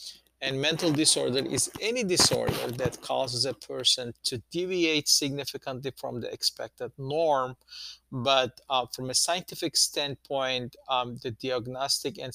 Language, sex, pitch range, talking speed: English, male, 125-150 Hz, 130 wpm